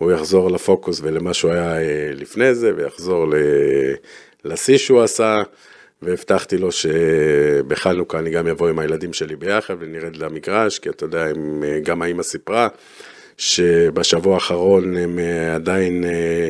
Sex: male